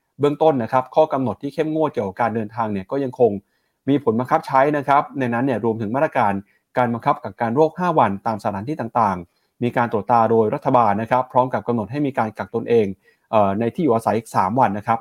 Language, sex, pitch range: Thai, male, 115-150 Hz